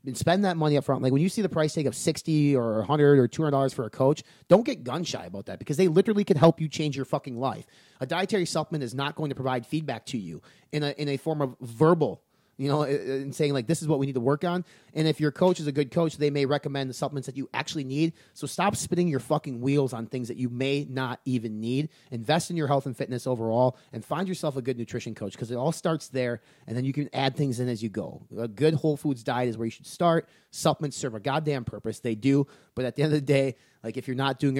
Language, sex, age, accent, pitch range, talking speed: English, male, 30-49, American, 125-155 Hz, 275 wpm